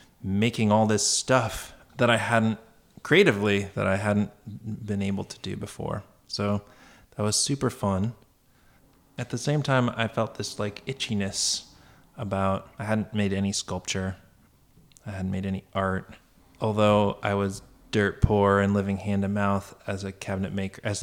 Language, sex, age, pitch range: English, male, 20-39, 100-115 Hz